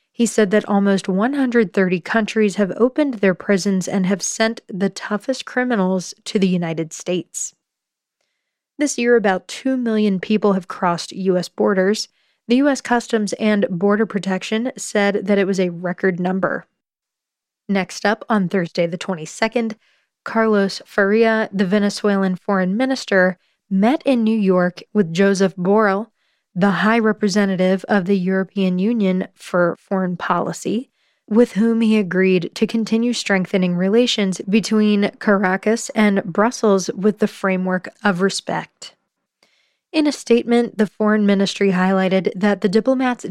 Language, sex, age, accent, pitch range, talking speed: English, female, 20-39, American, 190-220 Hz, 135 wpm